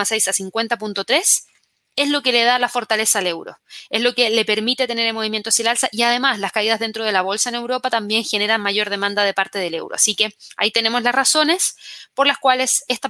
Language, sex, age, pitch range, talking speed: Spanish, female, 20-39, 225-270 Hz, 235 wpm